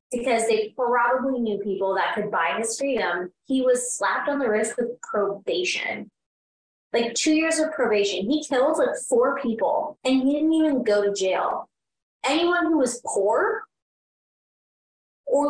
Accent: American